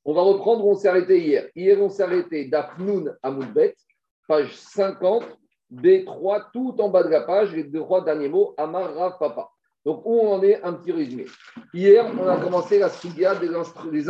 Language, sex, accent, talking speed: French, male, French, 195 wpm